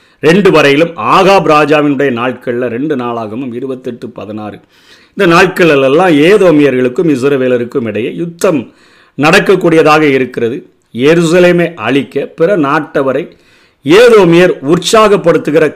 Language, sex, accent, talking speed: Tamil, male, native, 90 wpm